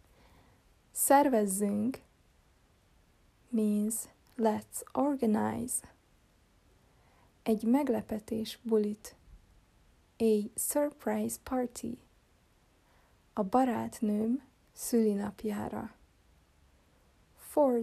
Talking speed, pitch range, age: 45 wpm, 205-235 Hz, 20-39